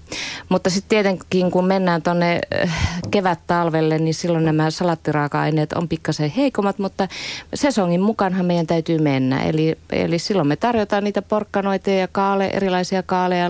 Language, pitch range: Finnish, 155-190 Hz